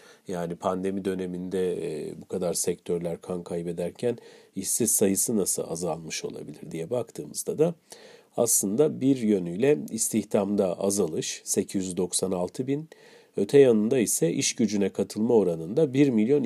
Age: 40-59